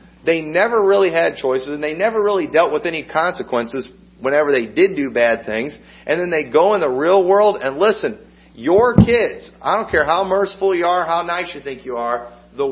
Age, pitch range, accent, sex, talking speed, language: 40-59, 140-185 Hz, American, male, 210 wpm, English